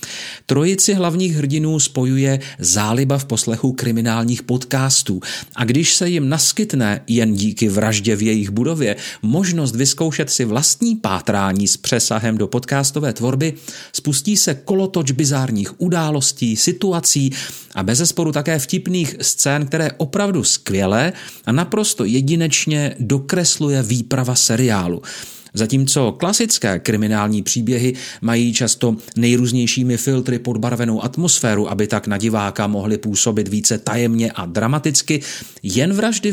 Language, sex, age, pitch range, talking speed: Czech, male, 40-59, 115-155 Hz, 120 wpm